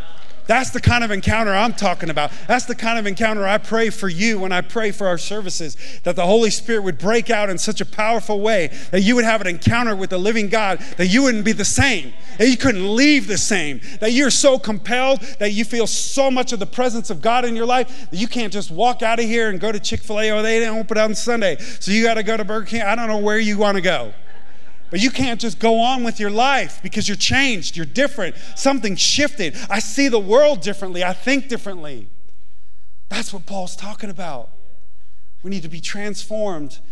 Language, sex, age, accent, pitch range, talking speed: English, male, 40-59, American, 160-225 Hz, 235 wpm